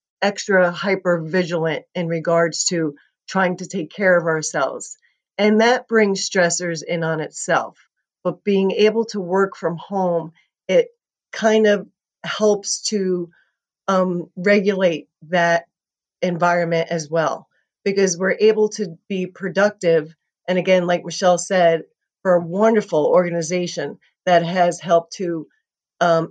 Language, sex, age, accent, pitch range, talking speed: English, female, 40-59, American, 165-195 Hz, 130 wpm